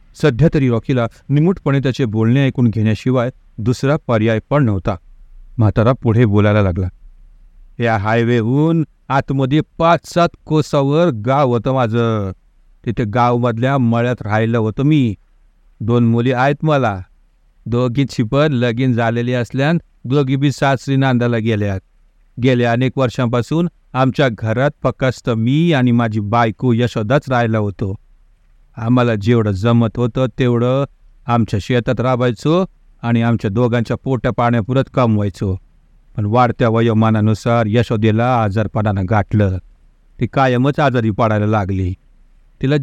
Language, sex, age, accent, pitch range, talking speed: Hindi, male, 50-69, native, 110-135 Hz, 100 wpm